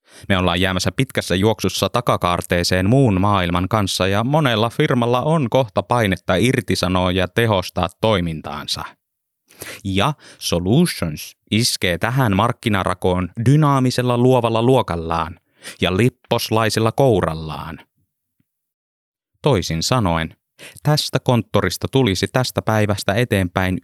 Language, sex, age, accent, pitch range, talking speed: Finnish, male, 30-49, native, 90-120 Hz, 95 wpm